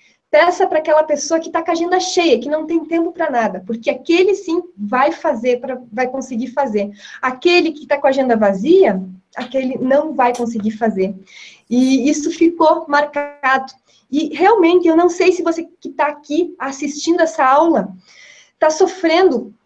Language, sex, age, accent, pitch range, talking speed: English, female, 20-39, Brazilian, 245-340 Hz, 170 wpm